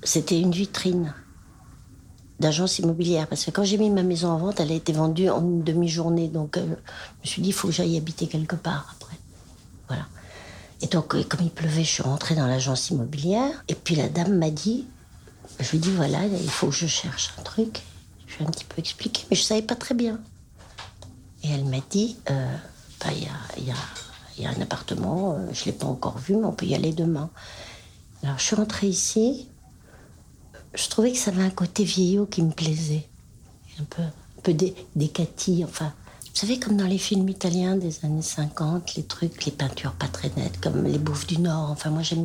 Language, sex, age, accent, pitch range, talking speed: French, female, 60-79, French, 130-180 Hz, 220 wpm